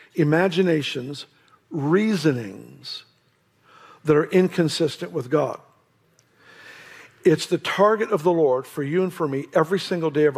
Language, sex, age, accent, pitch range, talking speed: English, male, 50-69, American, 150-185 Hz, 125 wpm